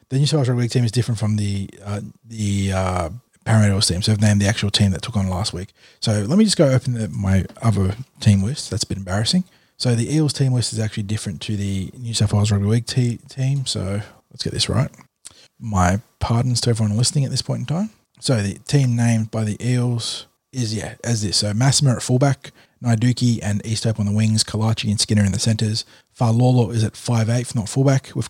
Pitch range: 105-125 Hz